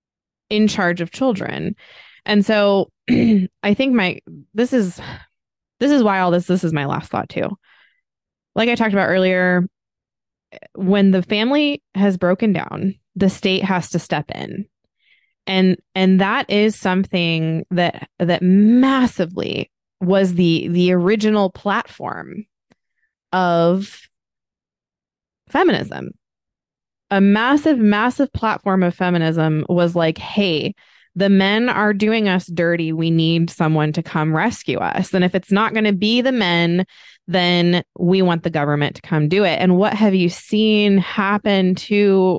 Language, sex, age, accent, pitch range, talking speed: English, female, 20-39, American, 175-215 Hz, 145 wpm